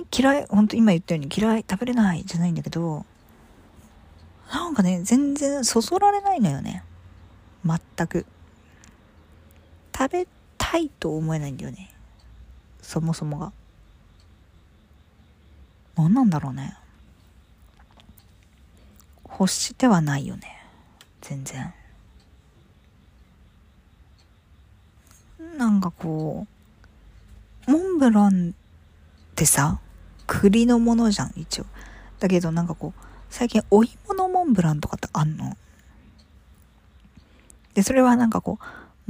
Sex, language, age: female, Japanese, 40-59